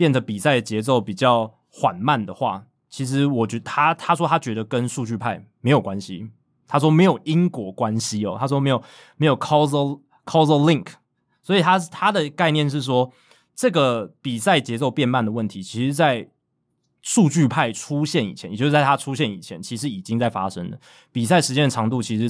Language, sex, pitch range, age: Chinese, male, 115-150 Hz, 20-39